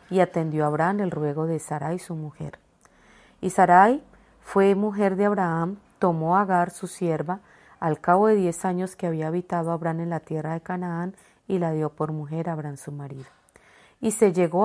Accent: Colombian